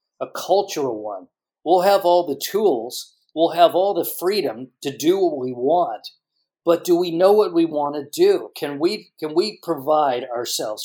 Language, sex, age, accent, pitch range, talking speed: English, male, 50-69, American, 140-185 Hz, 185 wpm